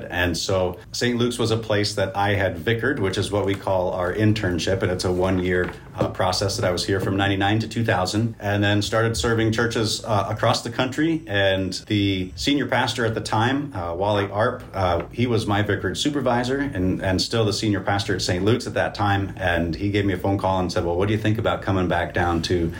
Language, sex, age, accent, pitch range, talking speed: English, male, 40-59, American, 90-110 Hz, 235 wpm